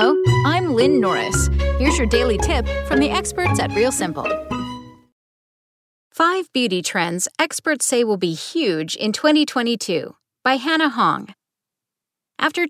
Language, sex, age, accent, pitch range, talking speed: English, female, 40-59, American, 180-275 Hz, 130 wpm